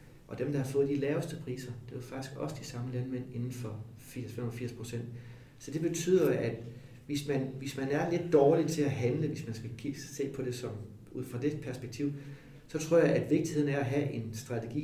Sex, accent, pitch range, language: male, native, 125-145 Hz, Danish